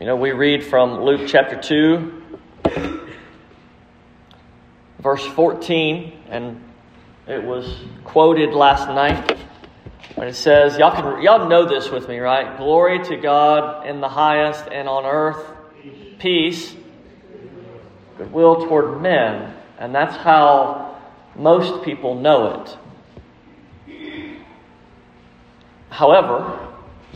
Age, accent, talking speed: 40-59, American, 105 wpm